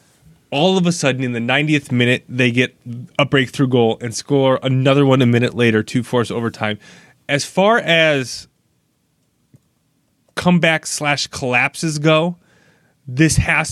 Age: 20-39